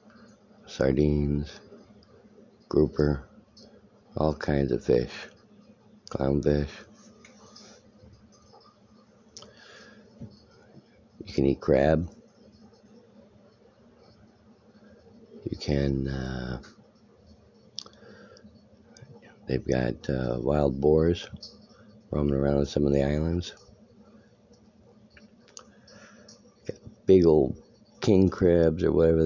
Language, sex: English, male